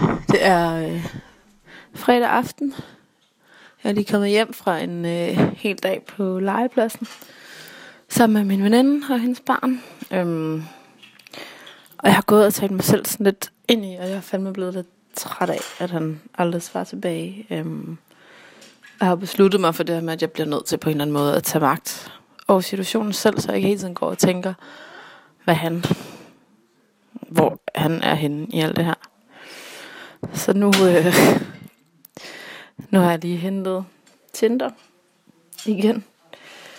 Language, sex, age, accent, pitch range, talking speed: Danish, female, 20-39, native, 170-225 Hz, 170 wpm